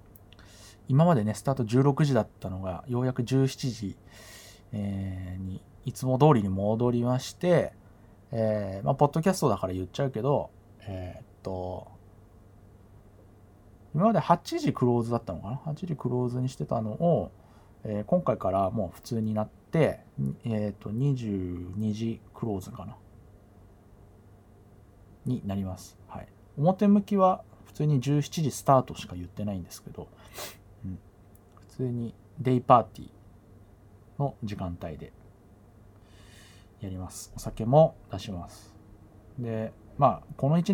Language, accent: Japanese, native